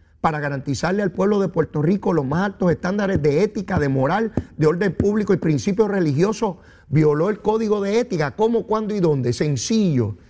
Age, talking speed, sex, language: 40-59, 180 wpm, male, Spanish